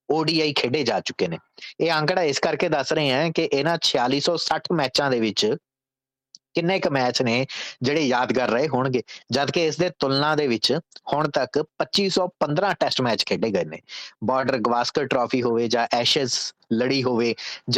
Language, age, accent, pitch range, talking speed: English, 30-49, Indian, 125-155 Hz, 150 wpm